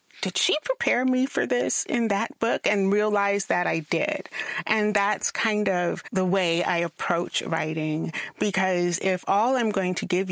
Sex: female